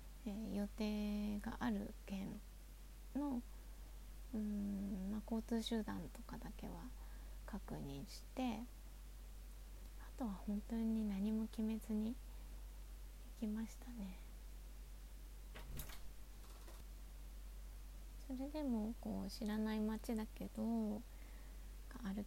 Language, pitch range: Japanese, 200-235 Hz